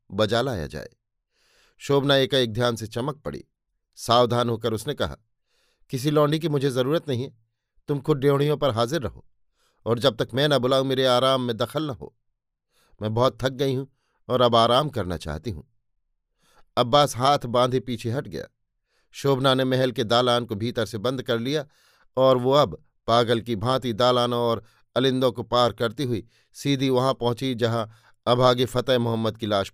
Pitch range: 120-150 Hz